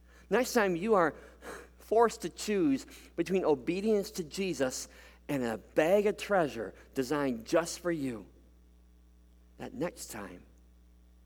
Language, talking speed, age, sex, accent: English, 125 wpm, 50-69, male, American